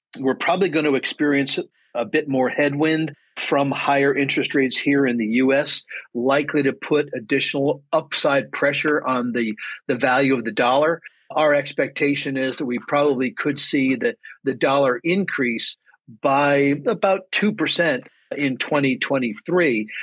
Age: 50-69